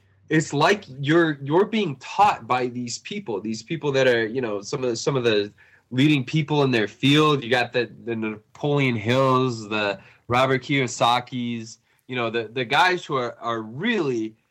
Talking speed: 180 wpm